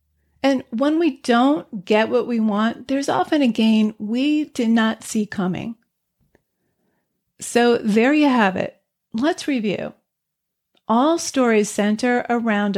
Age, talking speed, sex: 40-59, 130 wpm, female